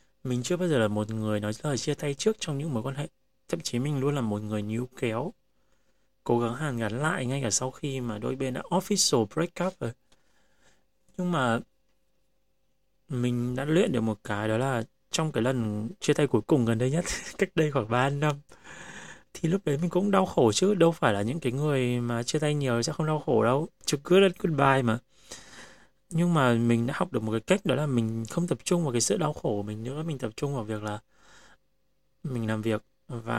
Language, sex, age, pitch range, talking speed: Vietnamese, male, 20-39, 115-160 Hz, 235 wpm